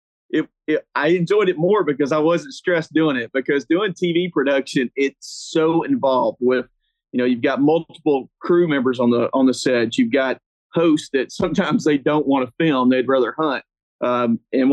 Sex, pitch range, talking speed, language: male, 125-160 Hz, 185 wpm, English